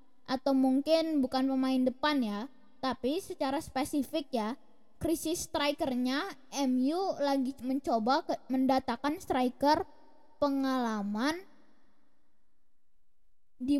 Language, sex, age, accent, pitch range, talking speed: Indonesian, female, 20-39, native, 250-295 Hz, 85 wpm